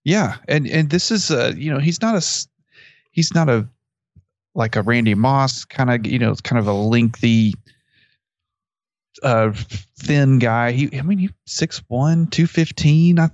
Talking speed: 170 wpm